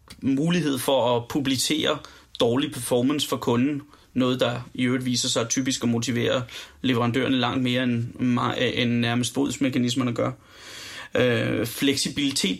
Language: Danish